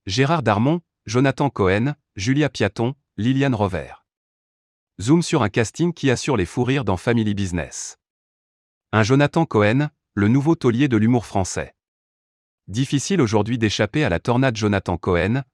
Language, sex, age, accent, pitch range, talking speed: French, male, 30-49, French, 95-130 Hz, 145 wpm